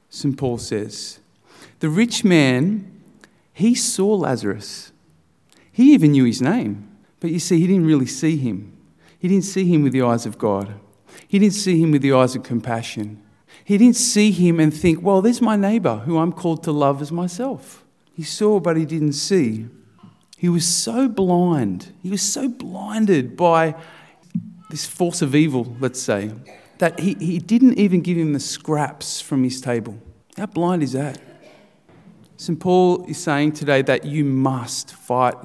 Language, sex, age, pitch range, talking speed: English, male, 40-59, 135-195 Hz, 175 wpm